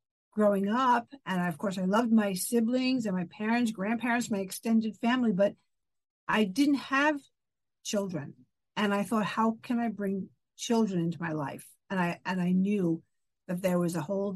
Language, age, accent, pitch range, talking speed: English, 50-69, American, 185-225 Hz, 175 wpm